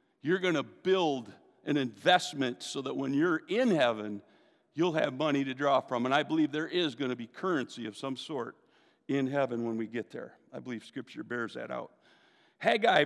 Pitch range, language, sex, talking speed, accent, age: 165-255 Hz, English, male, 200 wpm, American, 50-69